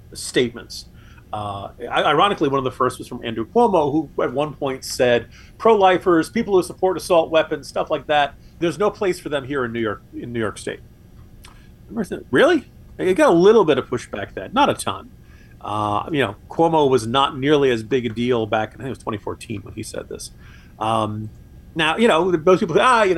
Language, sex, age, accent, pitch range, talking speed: English, male, 40-59, American, 125-180 Hz, 205 wpm